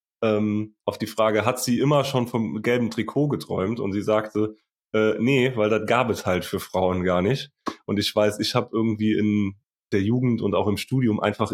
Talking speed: 205 wpm